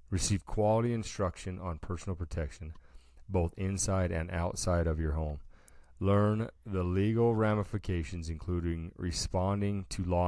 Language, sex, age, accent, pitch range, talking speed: English, male, 30-49, American, 85-100 Hz, 125 wpm